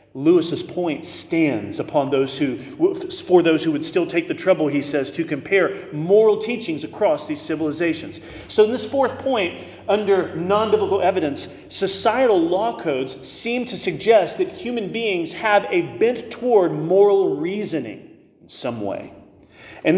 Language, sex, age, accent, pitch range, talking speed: English, male, 40-59, American, 185-275 Hz, 155 wpm